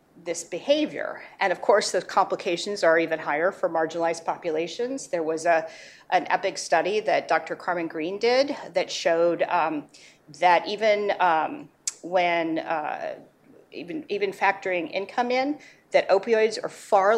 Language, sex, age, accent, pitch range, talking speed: English, female, 40-59, American, 165-215 Hz, 145 wpm